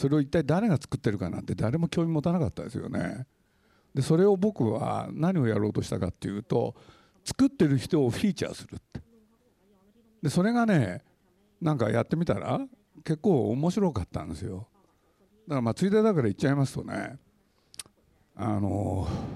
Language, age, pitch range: Japanese, 60-79, 110-175 Hz